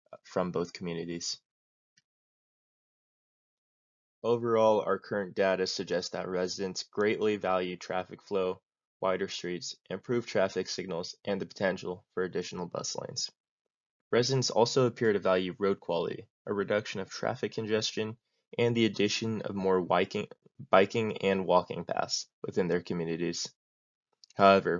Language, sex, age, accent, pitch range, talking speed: English, male, 20-39, American, 90-110 Hz, 125 wpm